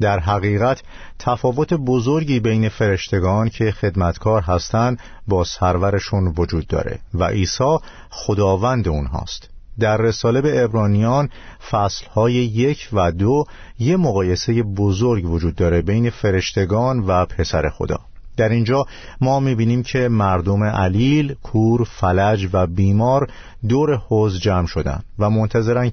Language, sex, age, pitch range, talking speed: Persian, male, 50-69, 90-120 Hz, 125 wpm